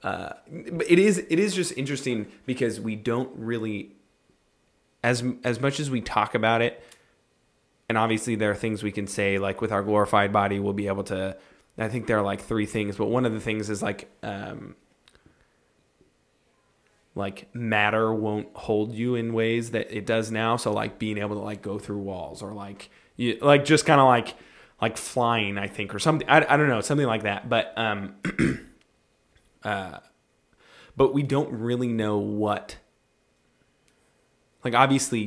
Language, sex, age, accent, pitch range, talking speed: English, male, 20-39, American, 100-120 Hz, 175 wpm